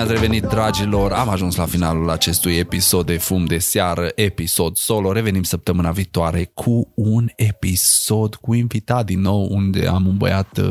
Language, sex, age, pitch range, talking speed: Romanian, male, 20-39, 85-110 Hz, 165 wpm